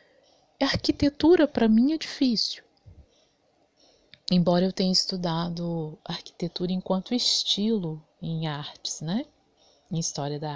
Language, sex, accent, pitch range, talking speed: Portuguese, female, Brazilian, 155-225 Hz, 110 wpm